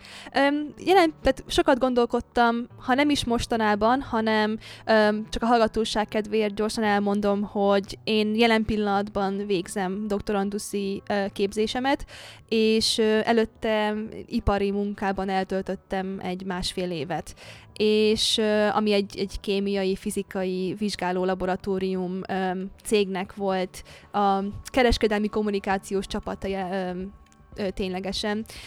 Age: 20-39